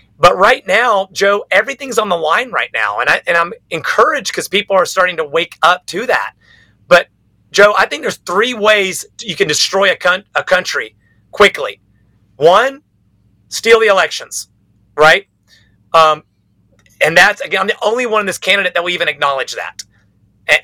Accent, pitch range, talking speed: American, 150-205 Hz, 175 wpm